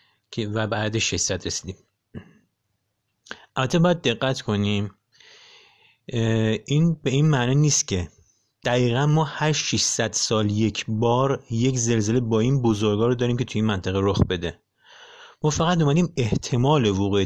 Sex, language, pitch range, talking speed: male, Persian, 105-140 Hz, 135 wpm